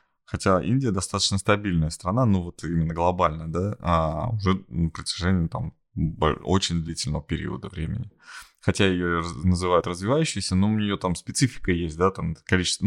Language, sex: Russian, male